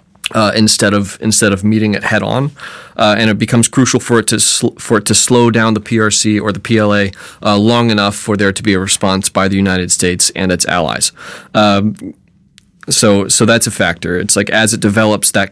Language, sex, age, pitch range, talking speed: English, male, 30-49, 100-115 Hz, 215 wpm